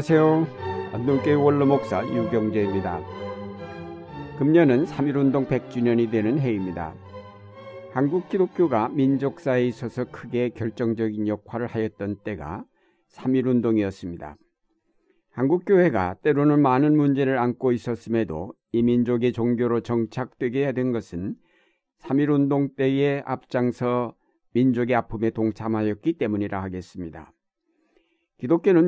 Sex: male